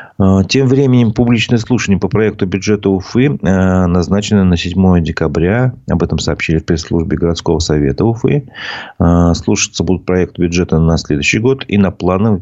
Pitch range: 85-110 Hz